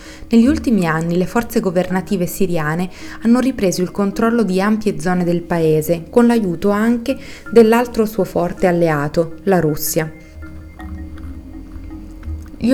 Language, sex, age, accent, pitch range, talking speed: Italian, female, 20-39, native, 170-215 Hz, 120 wpm